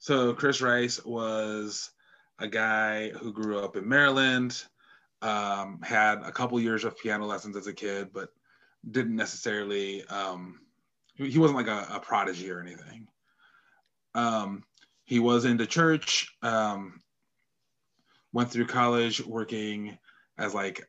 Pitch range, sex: 105-120 Hz, male